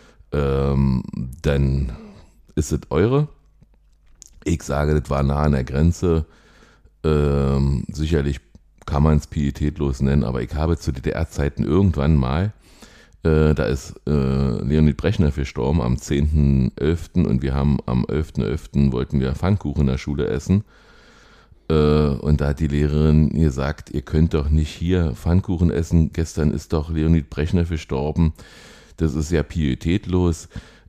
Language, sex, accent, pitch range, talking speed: German, male, German, 70-85 Hz, 140 wpm